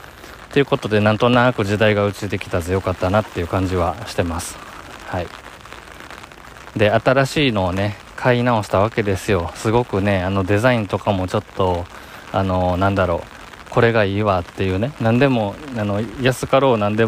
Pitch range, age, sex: 95-120 Hz, 20-39, male